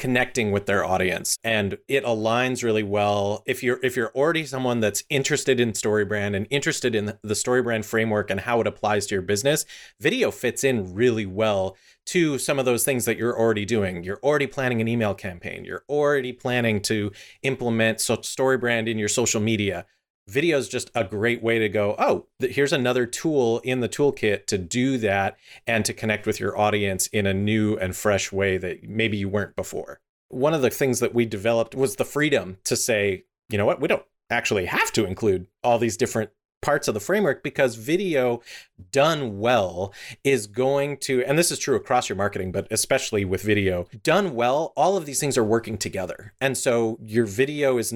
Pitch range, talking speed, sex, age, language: 105-130 Hz, 200 wpm, male, 30-49, English